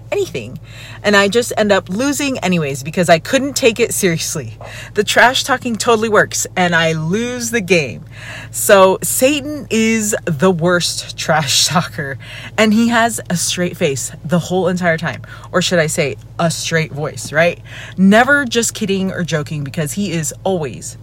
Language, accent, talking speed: English, American, 165 wpm